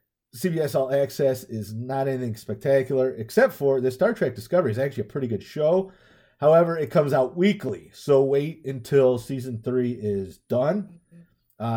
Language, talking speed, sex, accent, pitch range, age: English, 165 wpm, male, American, 105-145 Hz, 30-49